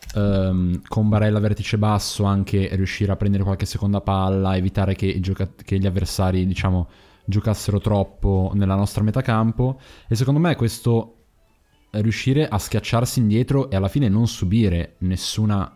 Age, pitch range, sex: 20-39, 95-115 Hz, male